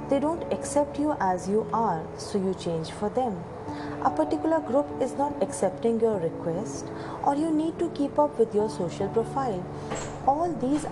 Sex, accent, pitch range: female, Indian, 195-275 Hz